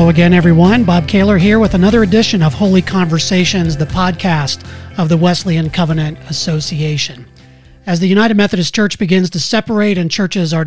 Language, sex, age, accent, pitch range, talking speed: English, male, 40-59, American, 170-200 Hz, 170 wpm